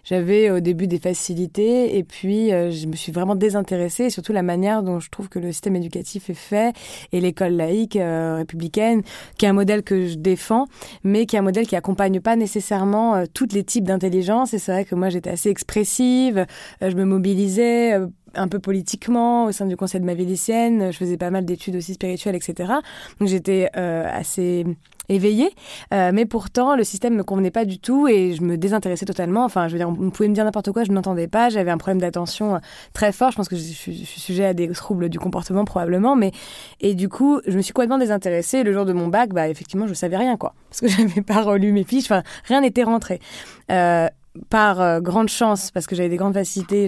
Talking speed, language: 235 wpm, French